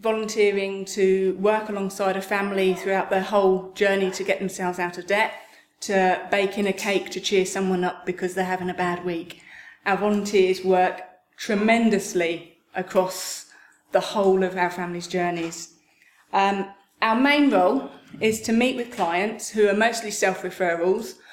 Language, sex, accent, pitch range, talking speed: English, female, British, 180-210 Hz, 155 wpm